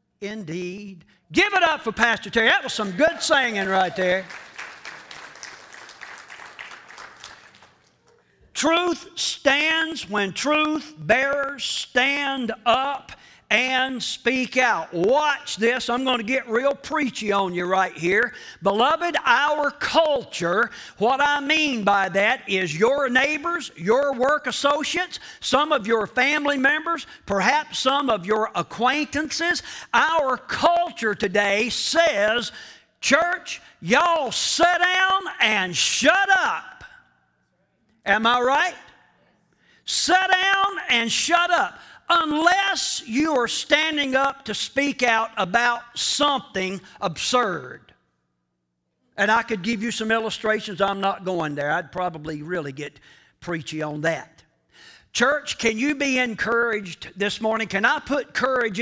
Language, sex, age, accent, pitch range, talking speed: English, male, 50-69, American, 200-295 Hz, 120 wpm